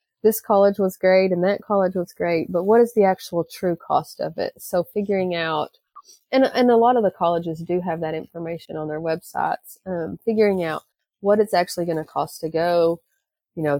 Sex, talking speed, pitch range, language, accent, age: female, 210 wpm, 160-185 Hz, English, American, 30-49